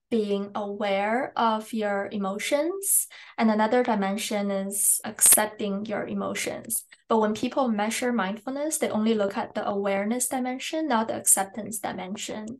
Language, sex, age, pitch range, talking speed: English, female, 20-39, 200-240 Hz, 135 wpm